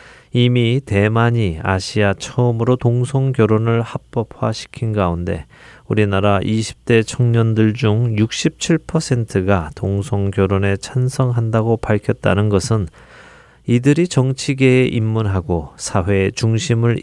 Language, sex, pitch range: Korean, male, 95-125 Hz